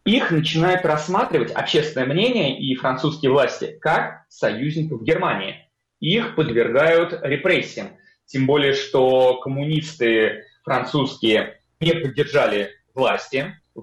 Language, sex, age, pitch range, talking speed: Russian, male, 30-49, 130-190 Hz, 100 wpm